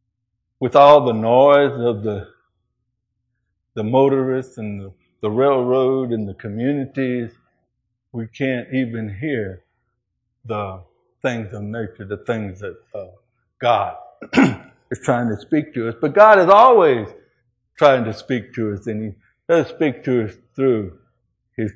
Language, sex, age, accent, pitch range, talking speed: English, male, 60-79, American, 110-130 Hz, 140 wpm